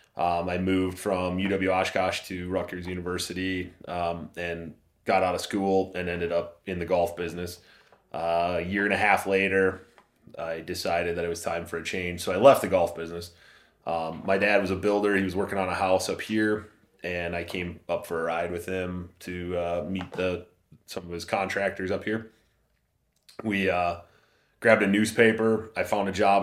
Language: English